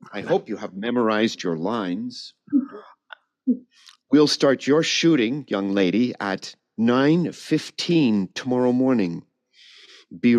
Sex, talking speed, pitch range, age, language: male, 110 wpm, 105-155 Hz, 50-69, English